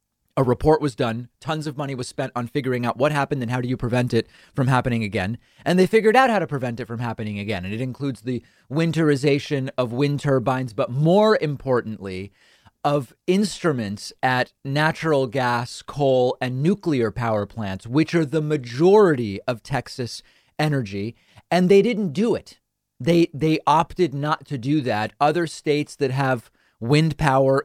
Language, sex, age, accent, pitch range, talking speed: English, male, 30-49, American, 125-155 Hz, 175 wpm